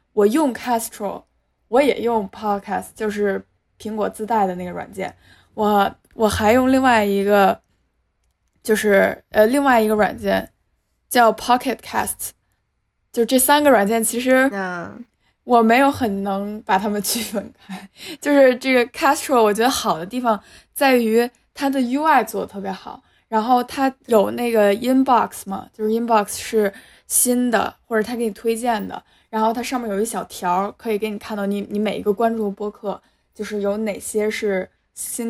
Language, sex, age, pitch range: Chinese, female, 10-29, 205-245 Hz